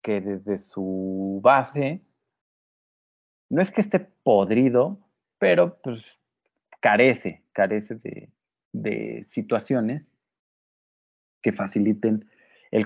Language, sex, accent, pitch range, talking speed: Spanish, male, Mexican, 105-135 Hz, 90 wpm